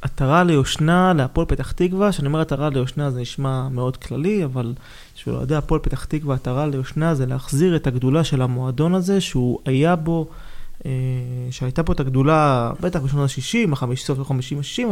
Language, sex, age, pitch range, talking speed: Hebrew, male, 20-39, 130-155 Hz, 145 wpm